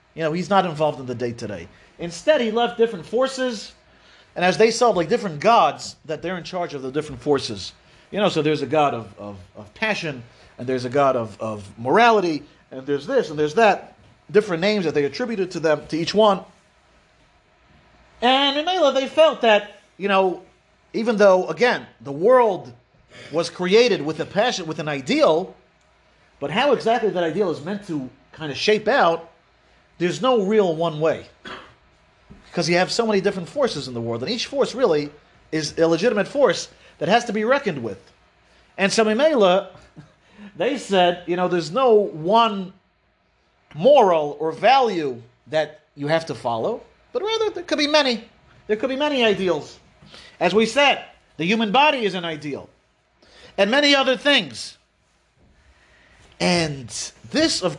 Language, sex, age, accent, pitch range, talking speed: English, male, 40-59, American, 145-225 Hz, 175 wpm